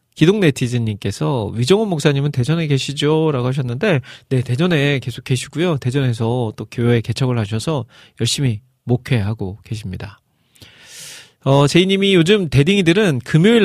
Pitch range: 115-155 Hz